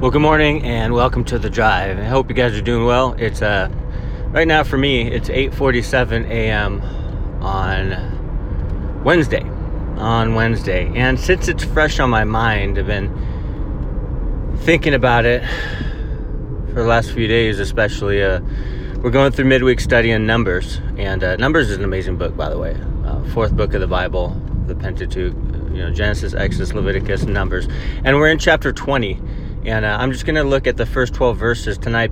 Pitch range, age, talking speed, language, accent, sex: 95-125 Hz, 30-49, 180 wpm, English, American, male